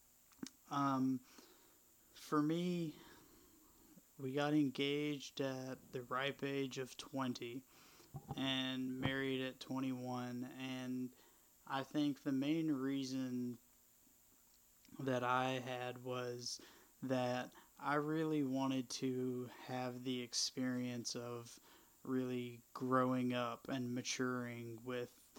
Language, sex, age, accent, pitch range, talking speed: English, male, 20-39, American, 125-135 Hz, 95 wpm